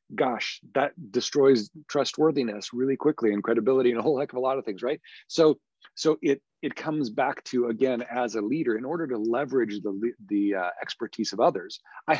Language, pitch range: English, 110-145 Hz